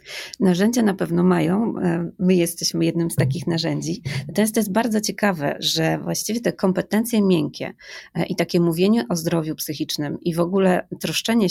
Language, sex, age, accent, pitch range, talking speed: Polish, female, 20-39, native, 165-195 Hz, 160 wpm